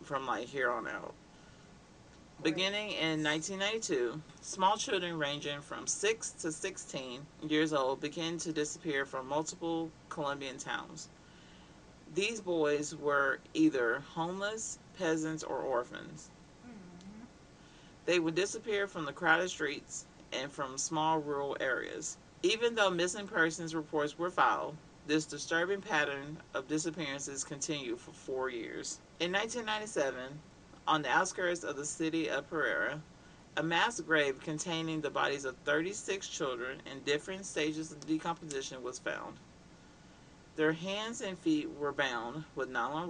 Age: 40-59